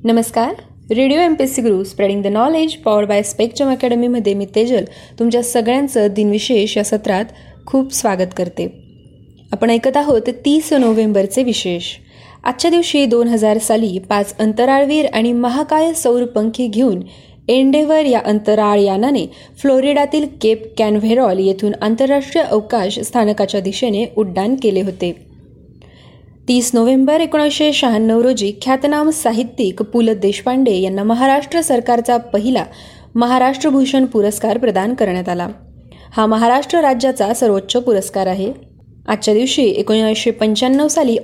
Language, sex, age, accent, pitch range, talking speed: Marathi, female, 20-39, native, 205-260 Hz, 115 wpm